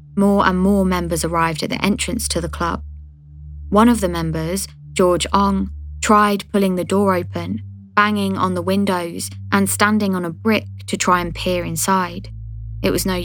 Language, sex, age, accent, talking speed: English, female, 20-39, British, 175 wpm